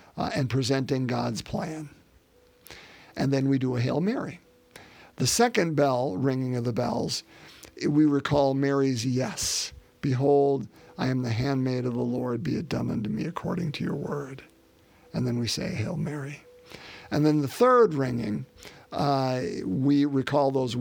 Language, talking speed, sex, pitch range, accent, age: English, 160 wpm, male, 125-160 Hz, American, 50-69